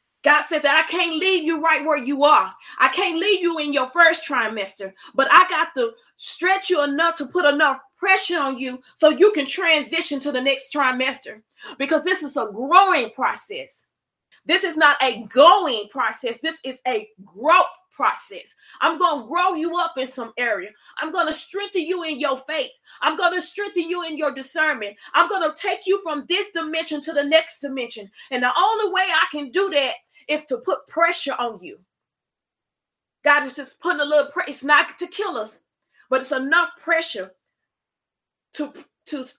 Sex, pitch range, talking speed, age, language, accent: female, 270-345 Hz, 190 wpm, 30-49, English, American